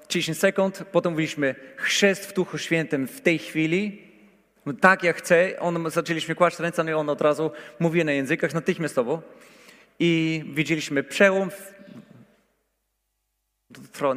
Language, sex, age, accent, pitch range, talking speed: Polish, male, 40-59, native, 145-195 Hz, 135 wpm